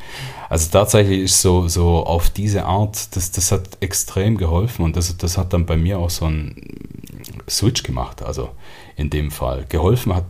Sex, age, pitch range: male, 30-49, 75-95 Hz